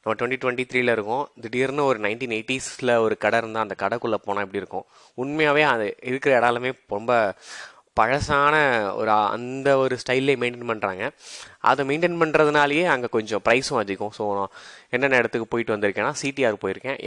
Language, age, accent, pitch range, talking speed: Tamil, 20-39, native, 105-135 Hz, 155 wpm